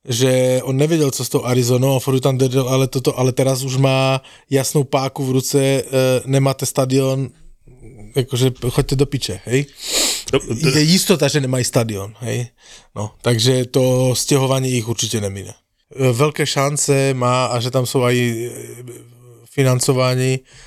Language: Slovak